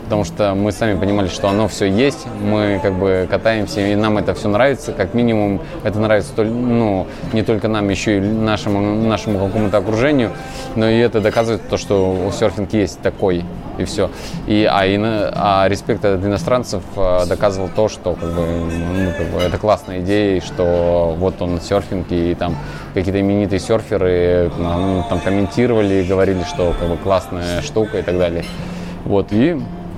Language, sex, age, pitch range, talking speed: Russian, male, 20-39, 95-110 Hz, 150 wpm